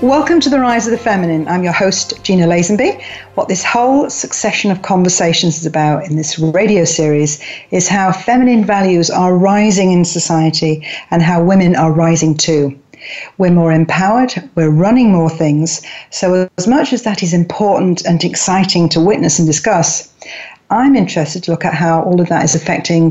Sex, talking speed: female, 180 wpm